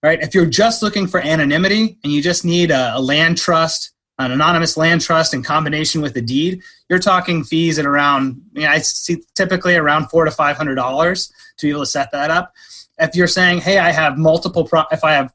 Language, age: English, 30-49